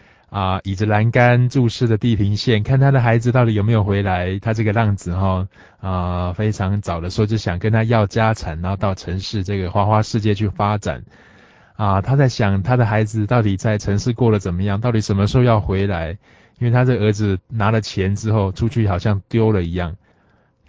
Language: Chinese